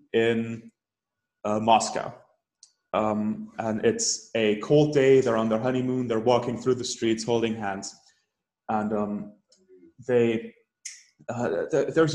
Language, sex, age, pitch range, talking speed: English, male, 20-39, 110-135 Hz, 130 wpm